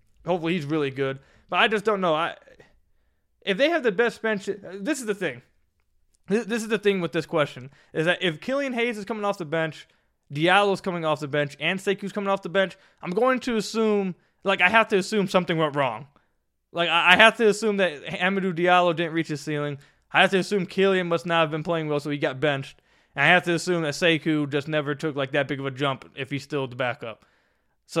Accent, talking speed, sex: American, 240 wpm, male